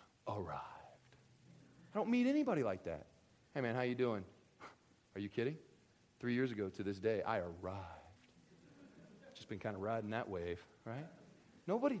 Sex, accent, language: male, American, English